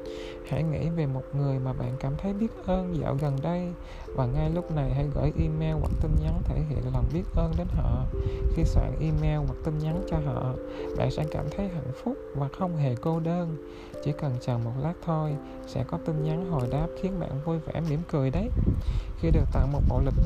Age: 20-39